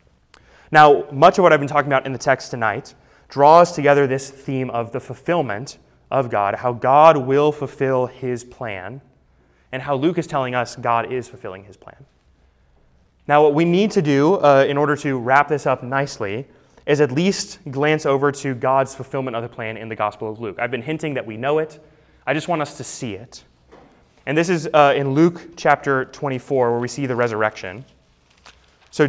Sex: male